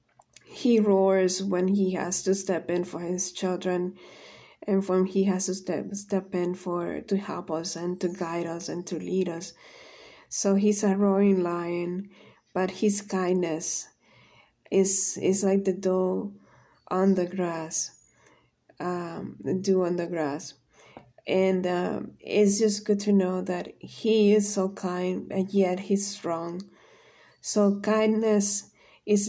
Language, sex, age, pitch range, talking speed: English, female, 20-39, 175-200 Hz, 150 wpm